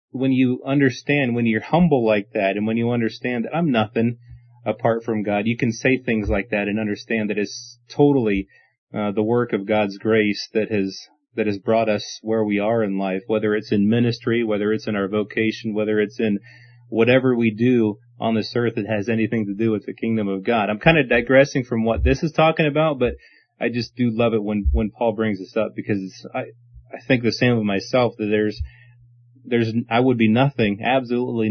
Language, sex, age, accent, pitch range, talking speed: English, male, 30-49, American, 105-125 Hz, 215 wpm